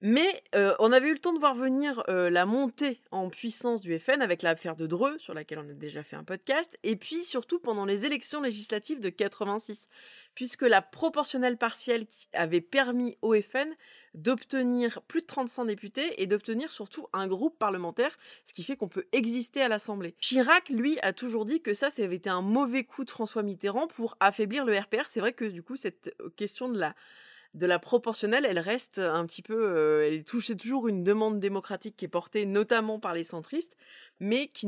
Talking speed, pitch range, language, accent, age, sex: 205 wpm, 195-255 Hz, French, French, 30-49, female